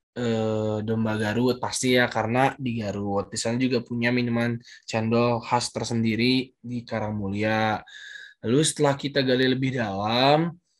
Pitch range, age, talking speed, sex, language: 120-145 Hz, 20-39, 130 wpm, male, Indonesian